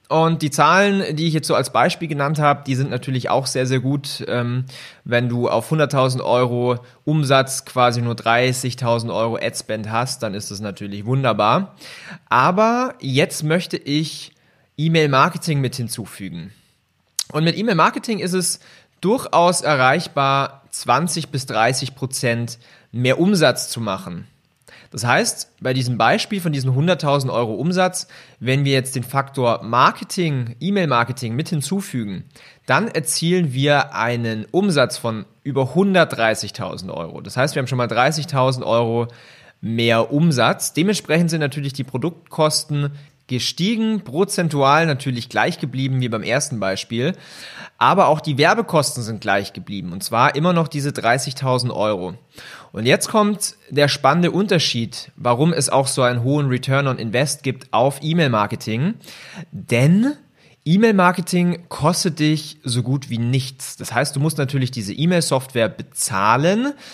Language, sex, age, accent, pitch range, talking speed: German, male, 30-49, German, 120-160 Hz, 140 wpm